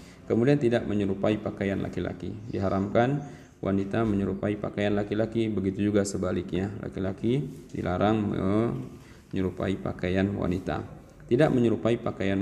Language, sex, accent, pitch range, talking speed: Indonesian, male, native, 95-115 Hz, 100 wpm